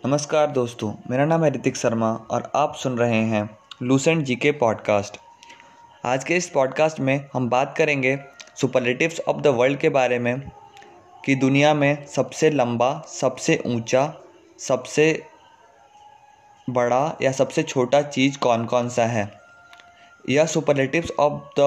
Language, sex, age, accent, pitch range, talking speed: Hindi, male, 20-39, native, 130-160 Hz, 140 wpm